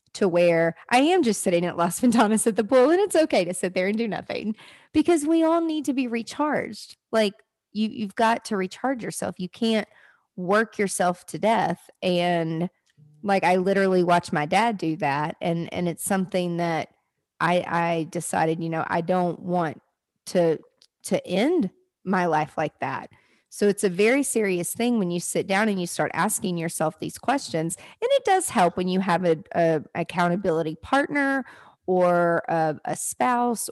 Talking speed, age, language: 180 wpm, 30-49, English